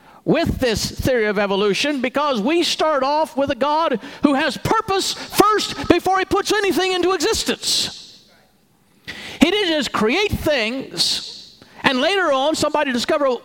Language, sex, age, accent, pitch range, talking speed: English, male, 50-69, American, 230-340 Hz, 145 wpm